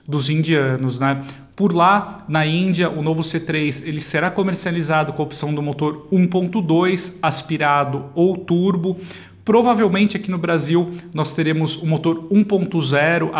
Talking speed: 145 wpm